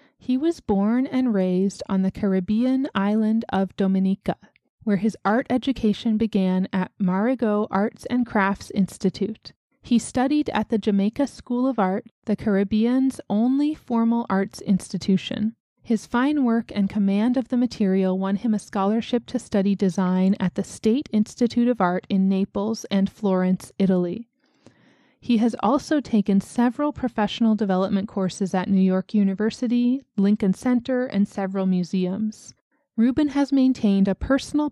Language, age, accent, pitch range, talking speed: English, 30-49, American, 195-240 Hz, 145 wpm